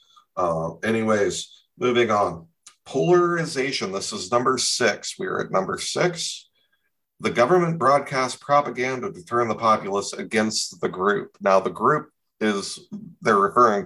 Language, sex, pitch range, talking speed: English, male, 100-130 Hz, 135 wpm